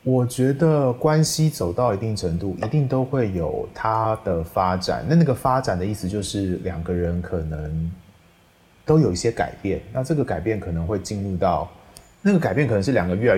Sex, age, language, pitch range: male, 20-39, Chinese, 90-115 Hz